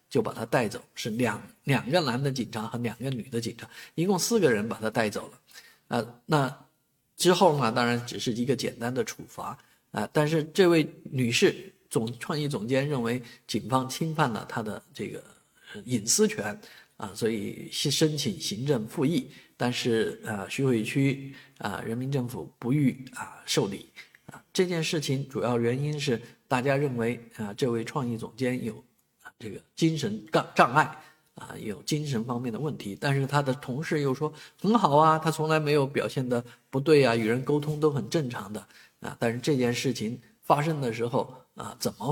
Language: Chinese